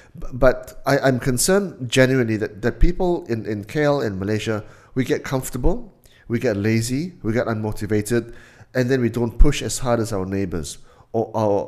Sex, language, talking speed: male, English, 175 wpm